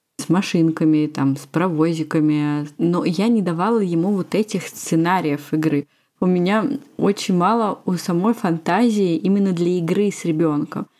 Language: Russian